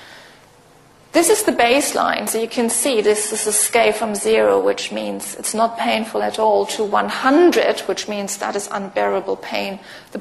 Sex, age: female, 30-49